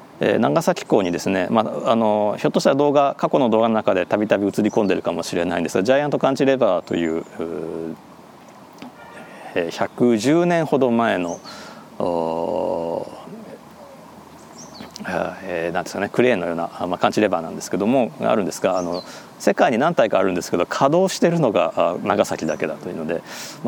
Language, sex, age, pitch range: Japanese, male, 40-59, 95-140 Hz